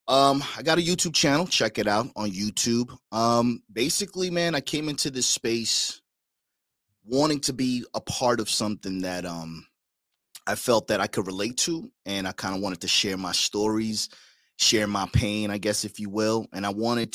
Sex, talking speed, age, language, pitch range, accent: male, 195 wpm, 30-49, English, 100-130 Hz, American